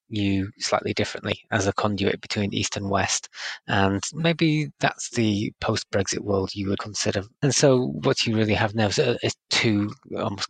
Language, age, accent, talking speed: English, 20-39, British, 170 wpm